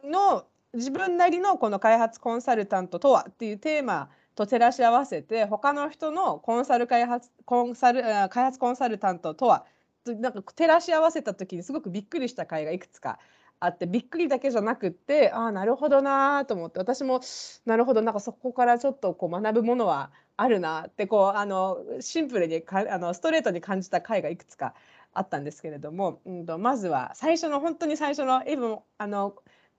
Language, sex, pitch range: Japanese, female, 185-275 Hz